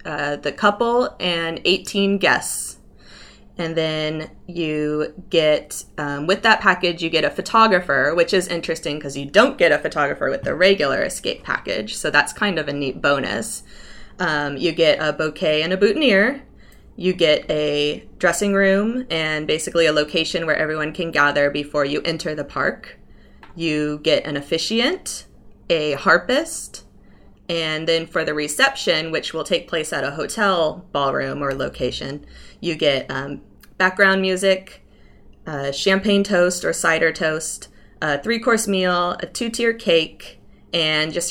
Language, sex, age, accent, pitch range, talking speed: English, female, 20-39, American, 150-185 Hz, 155 wpm